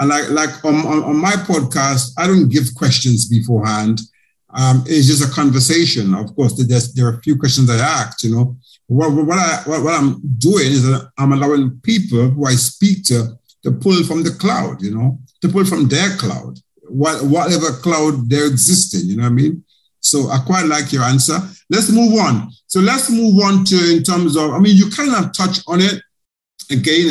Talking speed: 210 wpm